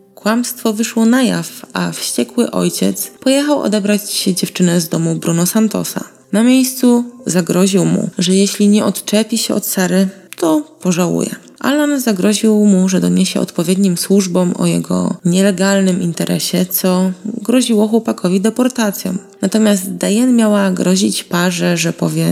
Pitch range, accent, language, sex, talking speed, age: 175-220 Hz, native, Polish, female, 130 wpm, 20-39